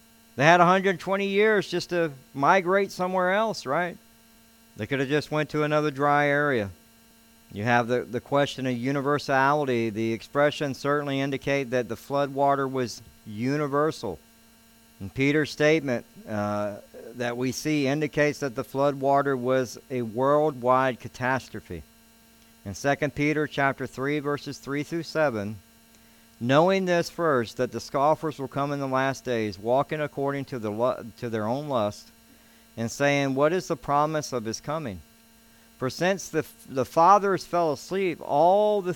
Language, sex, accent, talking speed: English, male, American, 150 wpm